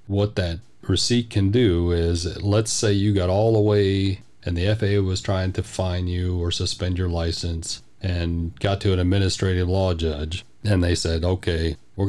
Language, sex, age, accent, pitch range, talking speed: English, male, 40-59, American, 85-100 Hz, 185 wpm